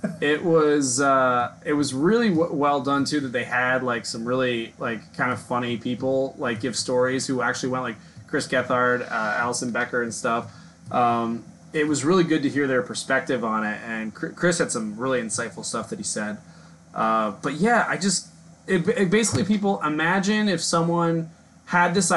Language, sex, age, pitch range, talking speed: English, male, 20-39, 145-200 Hz, 195 wpm